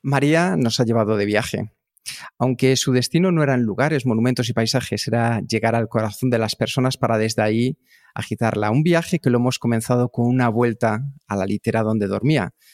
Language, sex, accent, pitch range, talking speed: Spanish, male, Spanish, 115-140 Hz, 195 wpm